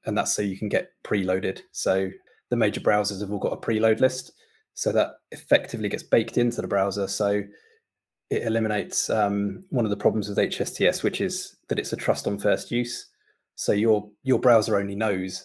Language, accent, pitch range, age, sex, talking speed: English, British, 100-115 Hz, 20-39, male, 195 wpm